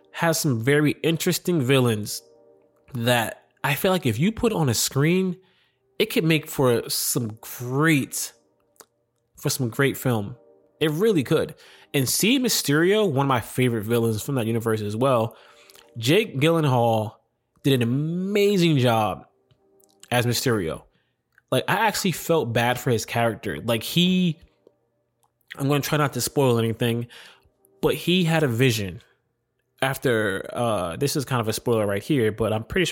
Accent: American